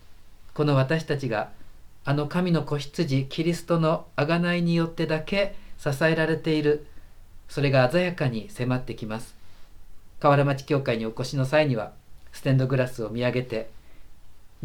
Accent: native